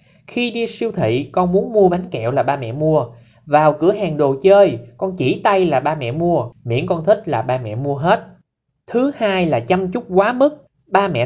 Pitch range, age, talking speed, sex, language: 140-210 Hz, 20-39, 225 wpm, male, Vietnamese